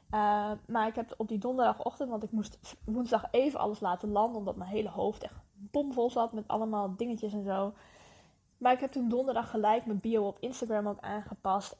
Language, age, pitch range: English, 10-29, 205-255 Hz